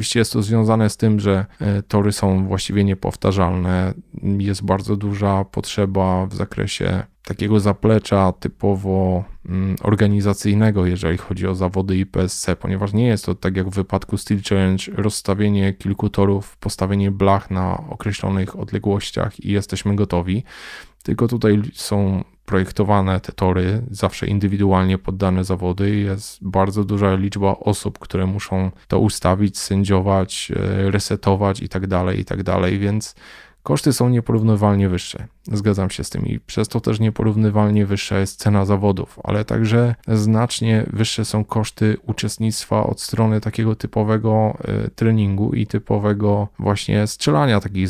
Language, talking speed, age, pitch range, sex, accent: Polish, 135 wpm, 20-39, 95-110 Hz, male, native